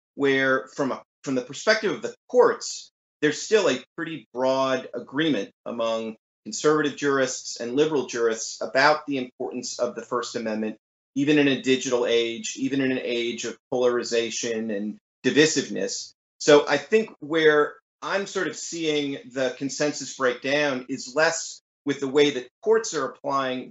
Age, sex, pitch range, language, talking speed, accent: 30-49, male, 125-150 Hz, English, 155 wpm, American